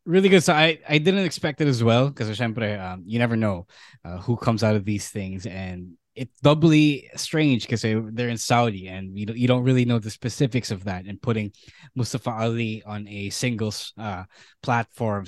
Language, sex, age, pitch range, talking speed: English, male, 20-39, 105-135 Hz, 190 wpm